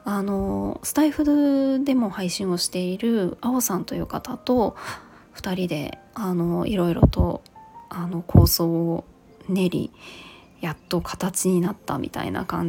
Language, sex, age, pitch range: Japanese, female, 20-39, 180-225 Hz